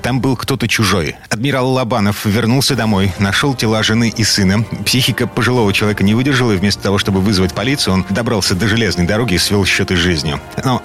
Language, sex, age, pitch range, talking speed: Russian, male, 30-49, 105-135 Hz, 195 wpm